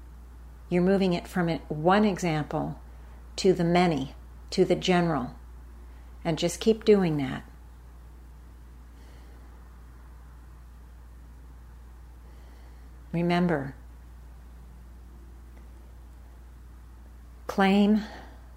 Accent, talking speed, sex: American, 60 wpm, female